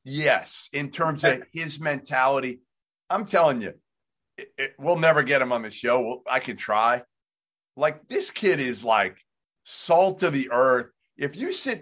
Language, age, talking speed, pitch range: English, 40-59, 155 wpm, 125-170 Hz